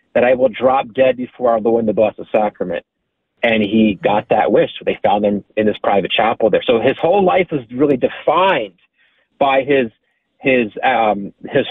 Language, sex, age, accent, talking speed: English, male, 40-59, American, 190 wpm